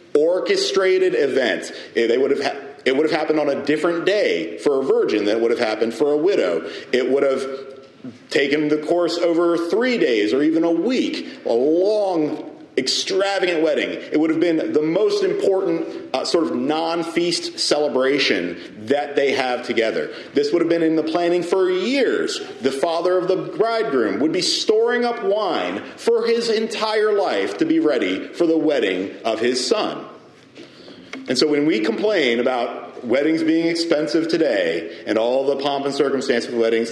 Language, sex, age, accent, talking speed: English, male, 40-59, American, 175 wpm